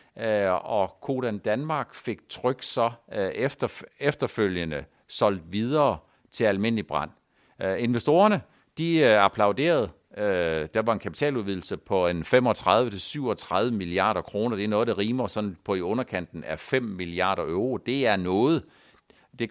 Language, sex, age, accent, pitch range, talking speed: Danish, male, 50-69, native, 105-135 Hz, 125 wpm